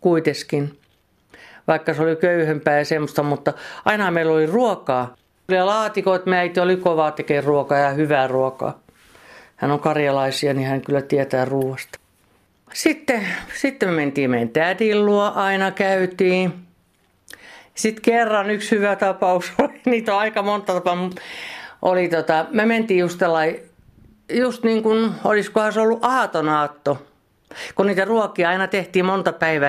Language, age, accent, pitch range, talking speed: Finnish, 60-79, native, 150-200 Hz, 135 wpm